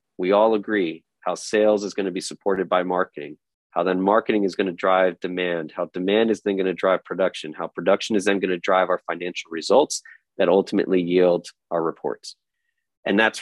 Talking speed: 200 wpm